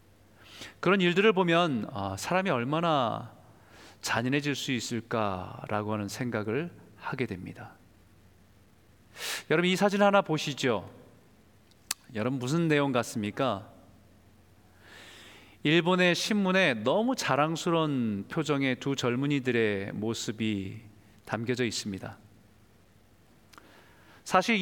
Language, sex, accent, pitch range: Korean, male, native, 110-175 Hz